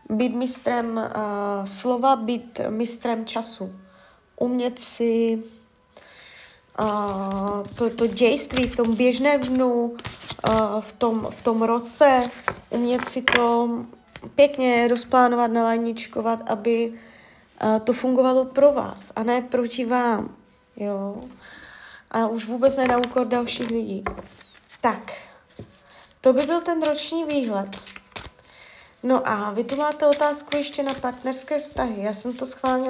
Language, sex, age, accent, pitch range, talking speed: Czech, female, 20-39, native, 225-260 Hz, 125 wpm